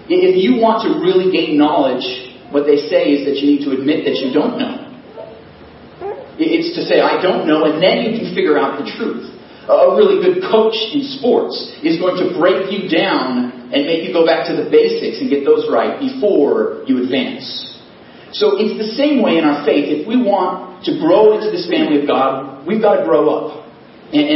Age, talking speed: 40-59, 210 wpm